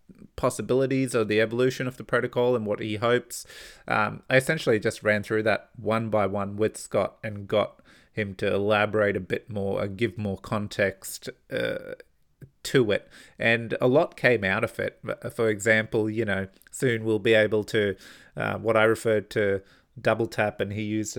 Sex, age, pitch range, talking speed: male, 30-49, 100-120 Hz, 180 wpm